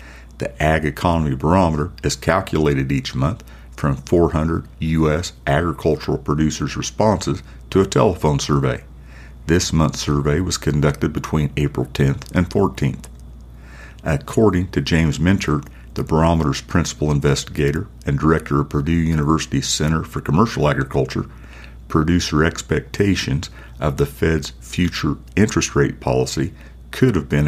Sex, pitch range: male, 65-80 Hz